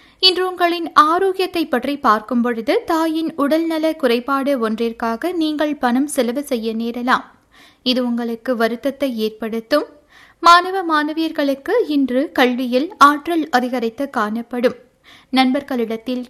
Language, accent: Tamil, native